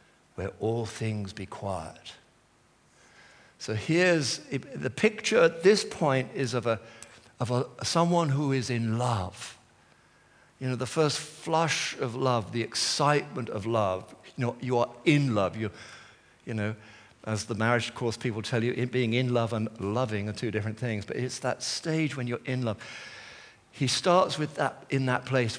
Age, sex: 50-69, male